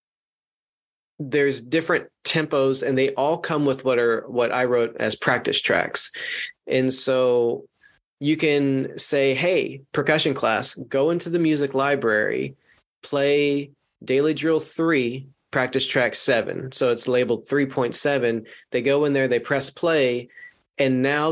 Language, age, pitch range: English, 30-49, 125-145 Hz